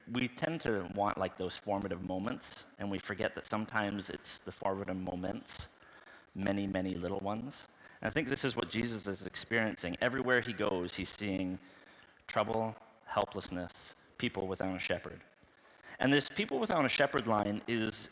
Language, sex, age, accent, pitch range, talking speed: English, male, 30-49, American, 95-115 Hz, 160 wpm